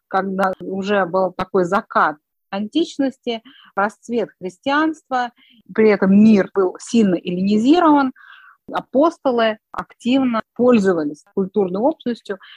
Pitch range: 180-230 Hz